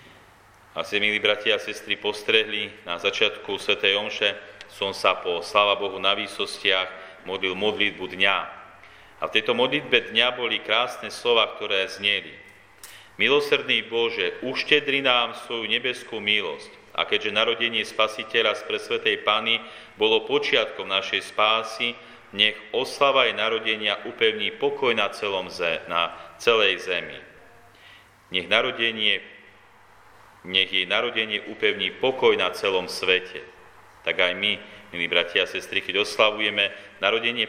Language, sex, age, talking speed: Slovak, male, 40-59, 130 wpm